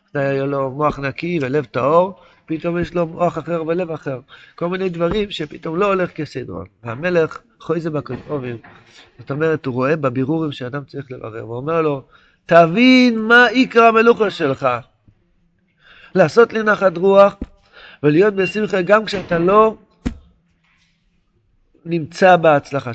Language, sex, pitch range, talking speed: Hebrew, male, 130-180 Hz, 130 wpm